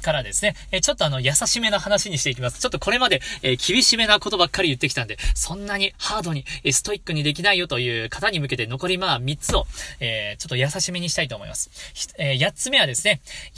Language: Japanese